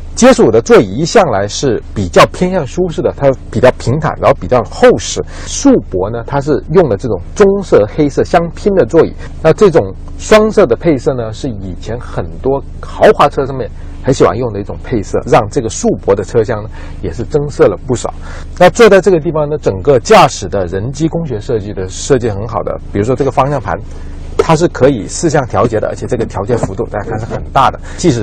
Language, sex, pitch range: Chinese, male, 100-160 Hz